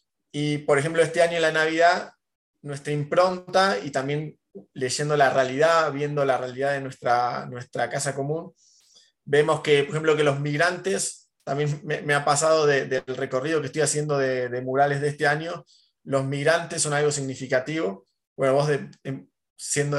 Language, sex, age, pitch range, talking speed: English, male, 20-39, 140-165 Hz, 170 wpm